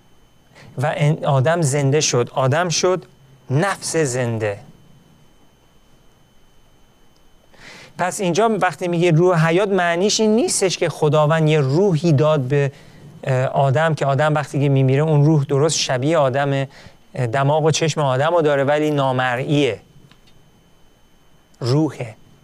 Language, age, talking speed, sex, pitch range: Persian, 40-59, 110 wpm, male, 135-165 Hz